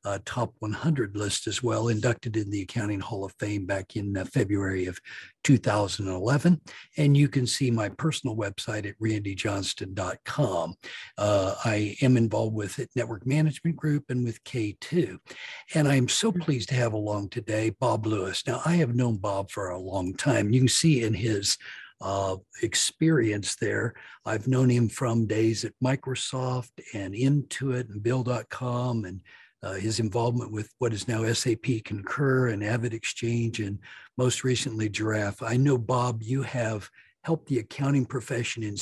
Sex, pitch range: male, 105-130 Hz